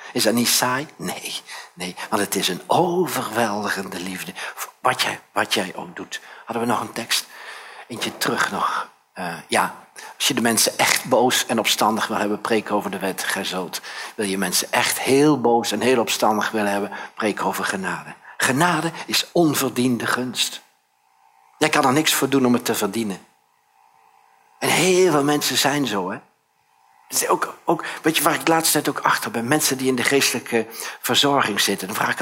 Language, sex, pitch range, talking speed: Dutch, male, 100-155 Hz, 185 wpm